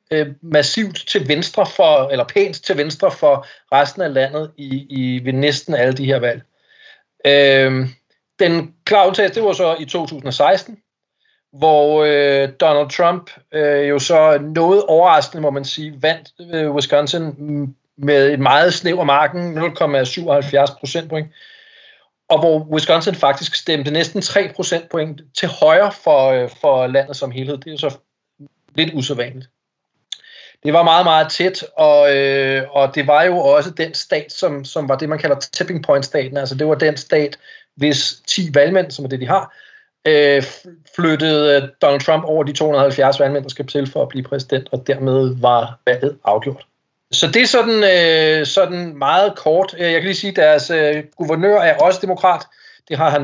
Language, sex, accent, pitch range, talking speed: English, male, Danish, 140-175 Hz, 170 wpm